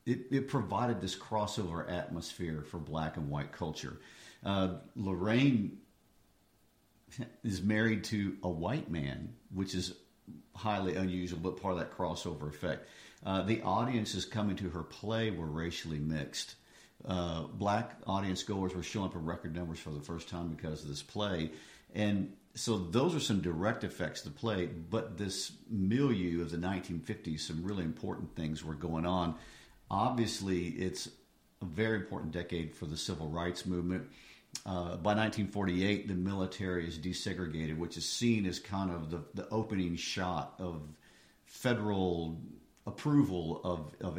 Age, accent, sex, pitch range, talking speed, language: 50-69, American, male, 85-105 Hz, 155 wpm, English